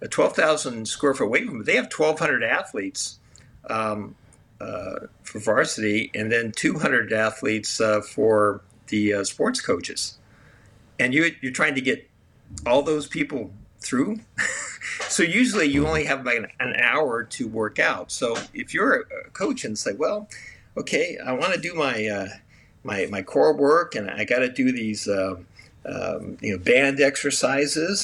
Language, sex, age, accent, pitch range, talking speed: English, male, 50-69, American, 110-150 Hz, 175 wpm